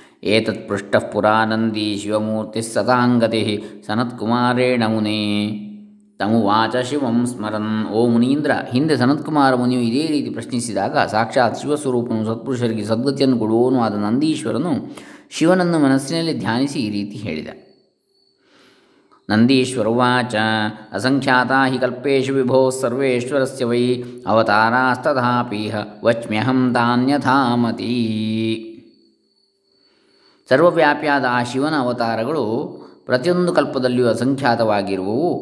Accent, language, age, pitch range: native, Kannada, 20-39, 110-130 Hz